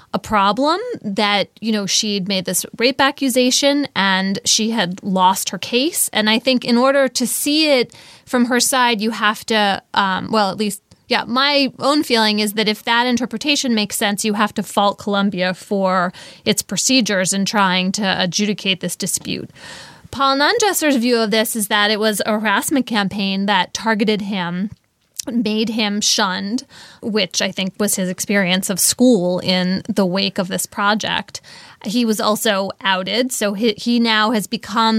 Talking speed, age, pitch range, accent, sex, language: 175 wpm, 20-39, 200-250 Hz, American, female, English